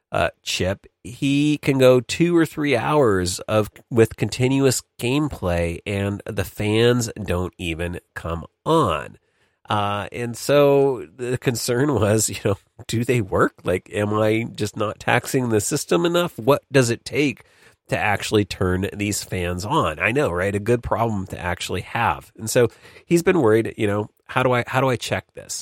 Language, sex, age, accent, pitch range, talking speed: English, male, 40-59, American, 100-125 Hz, 175 wpm